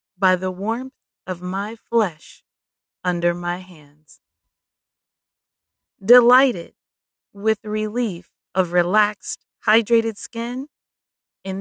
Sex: female